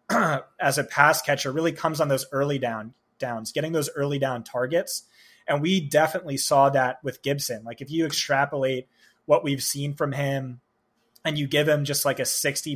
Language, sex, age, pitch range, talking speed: English, male, 20-39, 130-150 Hz, 190 wpm